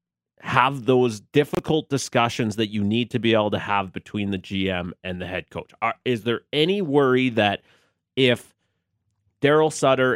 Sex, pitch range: male, 110-145 Hz